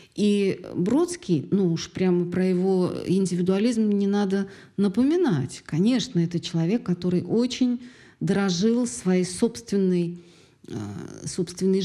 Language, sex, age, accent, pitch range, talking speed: Russian, female, 40-59, native, 175-215 Hz, 105 wpm